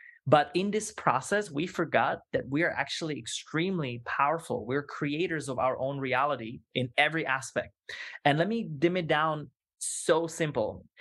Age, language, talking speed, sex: 20-39, English, 160 wpm, male